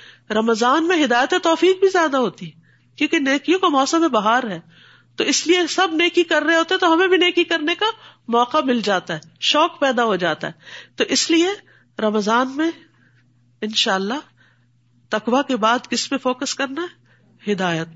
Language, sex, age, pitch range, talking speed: Urdu, female, 50-69, 195-260 Hz, 170 wpm